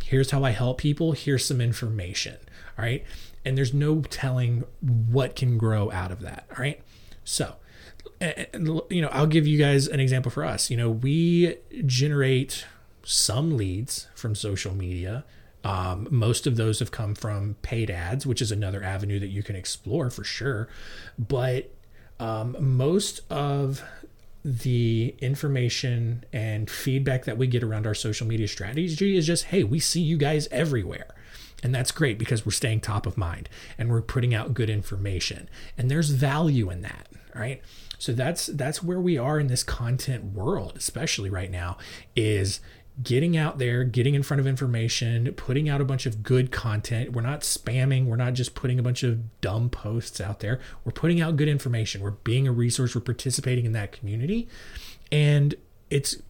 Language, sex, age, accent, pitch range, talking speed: English, male, 30-49, American, 110-140 Hz, 175 wpm